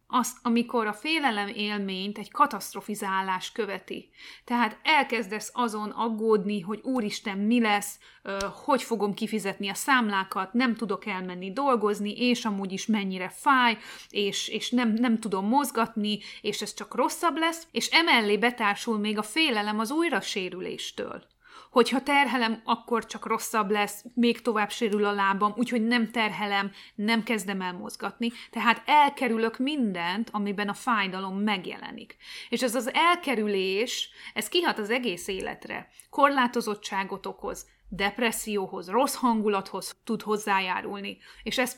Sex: female